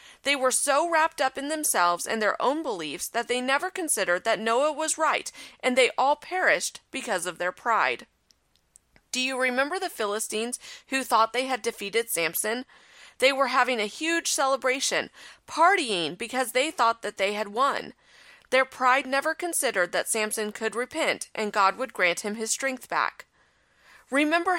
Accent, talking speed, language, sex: American, 170 wpm, English, female